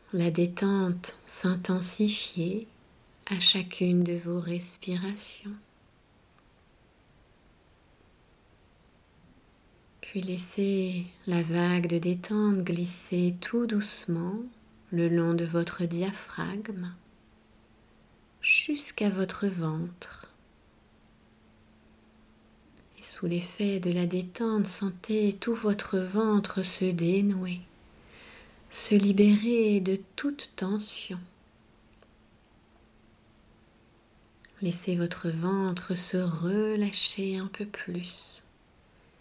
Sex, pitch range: female, 175-205 Hz